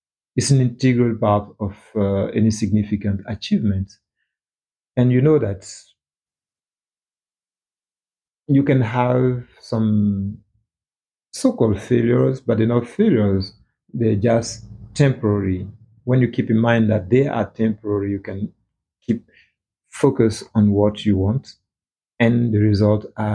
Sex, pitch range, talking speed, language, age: male, 100-115 Hz, 120 wpm, English, 50-69